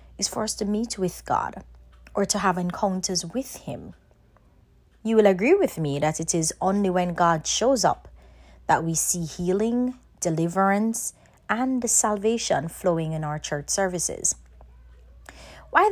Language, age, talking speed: English, 30-49, 150 wpm